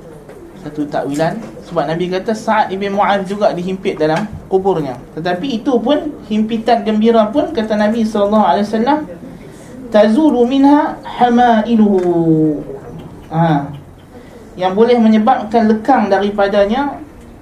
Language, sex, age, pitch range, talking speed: Malay, male, 20-39, 160-215 Hz, 100 wpm